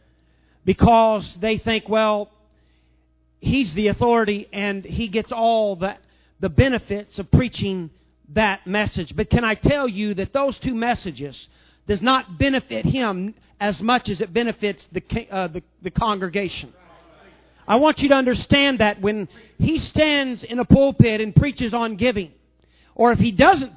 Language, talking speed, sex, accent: English, 150 wpm, male, American